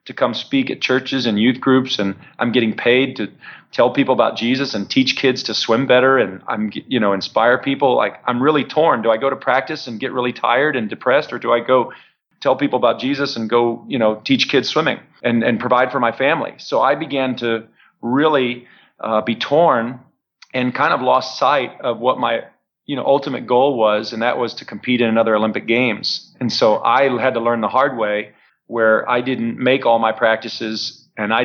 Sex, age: male, 40-59